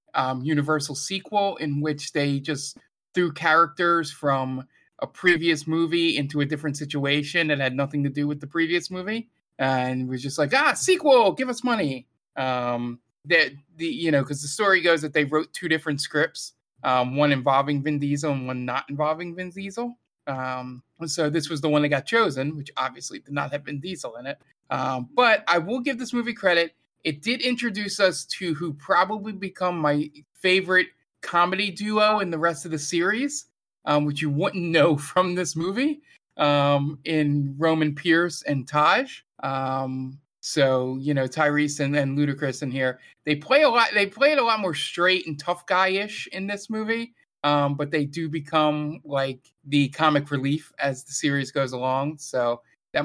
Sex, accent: male, American